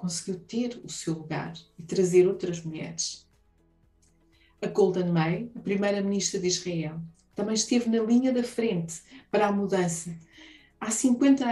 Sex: female